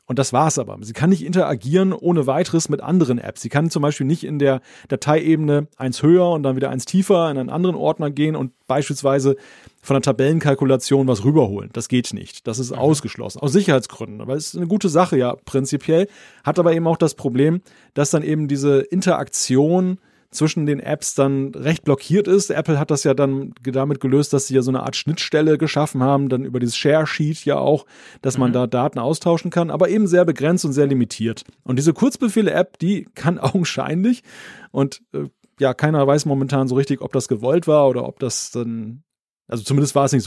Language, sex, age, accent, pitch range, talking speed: German, male, 30-49, German, 135-170 Hz, 200 wpm